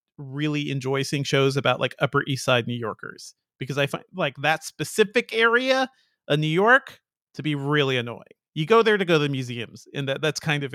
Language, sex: English, male